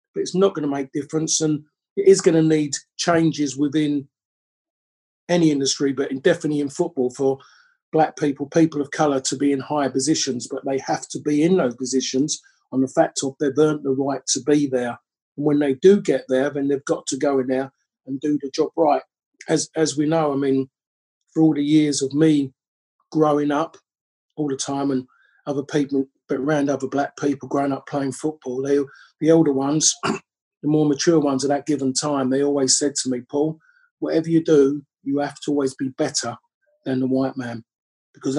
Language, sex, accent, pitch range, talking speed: English, male, British, 135-155 Hz, 200 wpm